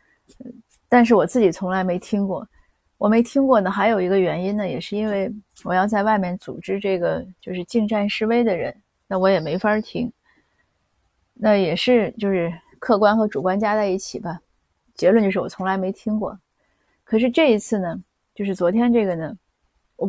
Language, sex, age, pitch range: Chinese, female, 30-49, 190-230 Hz